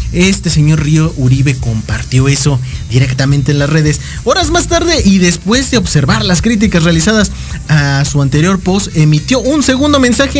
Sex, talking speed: male, 160 wpm